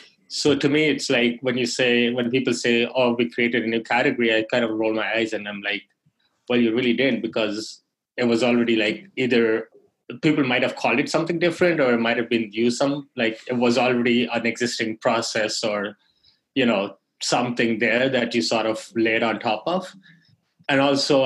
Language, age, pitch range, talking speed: English, 20-39, 115-130 Hz, 205 wpm